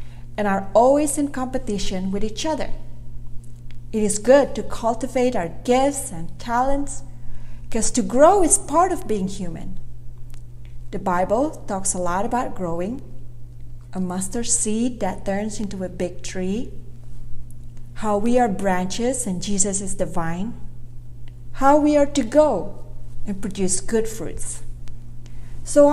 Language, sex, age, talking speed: English, female, 40-59, 135 wpm